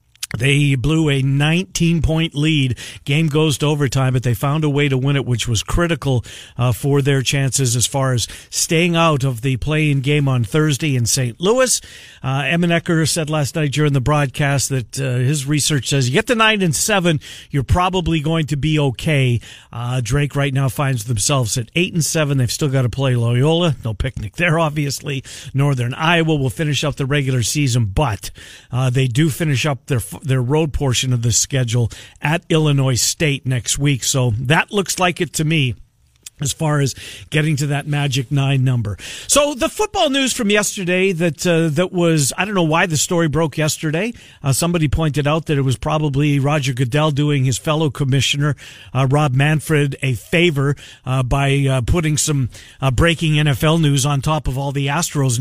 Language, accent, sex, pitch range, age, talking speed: English, American, male, 130-155 Hz, 50-69, 195 wpm